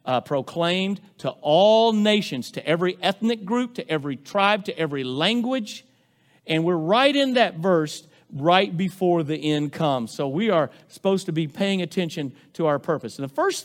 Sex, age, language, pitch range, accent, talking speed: male, 50-69, English, 155-210 Hz, American, 175 wpm